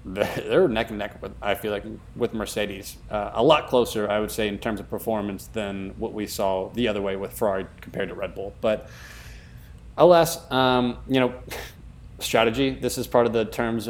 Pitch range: 105-120 Hz